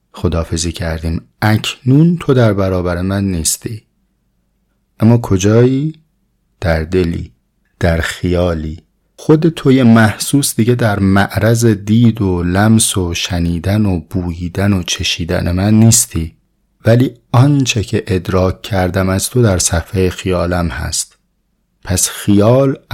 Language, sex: Persian, male